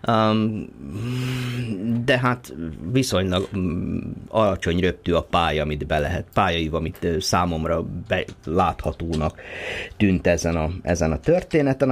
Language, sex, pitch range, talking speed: Hungarian, male, 80-110 Hz, 120 wpm